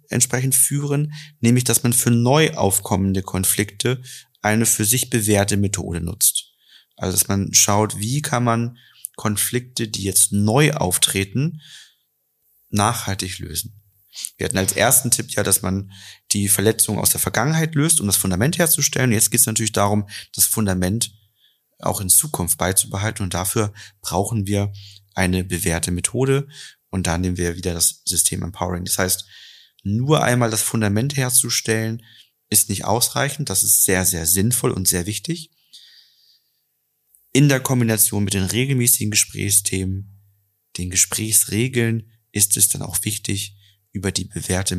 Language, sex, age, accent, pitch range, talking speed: German, male, 30-49, German, 95-120 Hz, 145 wpm